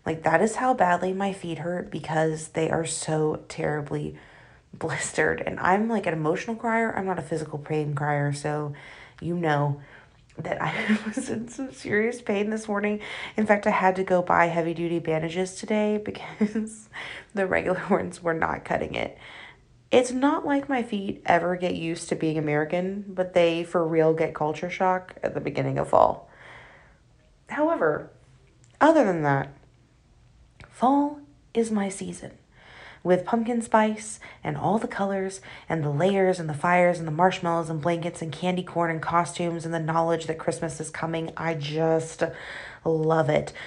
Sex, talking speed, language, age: female, 165 wpm, English, 30-49